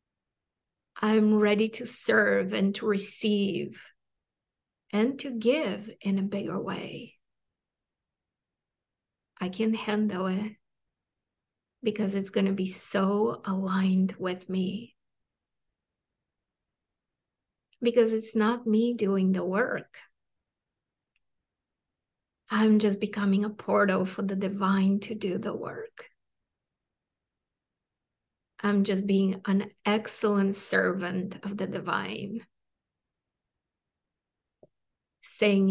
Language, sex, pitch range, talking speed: English, female, 190-215 Hz, 95 wpm